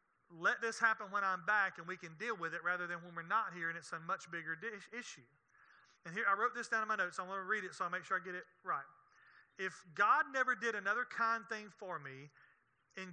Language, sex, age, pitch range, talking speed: English, male, 30-49, 175-240 Hz, 255 wpm